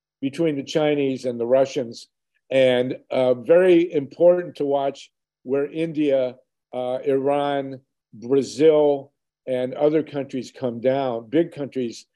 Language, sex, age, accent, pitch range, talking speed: English, male, 50-69, American, 125-150 Hz, 120 wpm